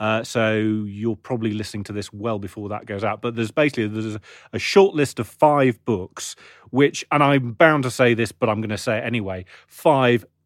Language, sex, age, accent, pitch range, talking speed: English, male, 30-49, British, 105-120 Hz, 220 wpm